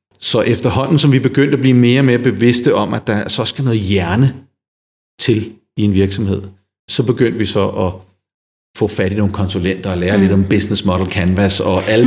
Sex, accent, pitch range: male, native, 105-145 Hz